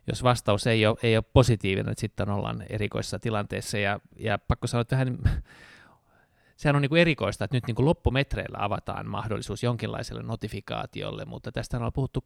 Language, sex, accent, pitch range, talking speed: Finnish, male, native, 110-130 Hz, 160 wpm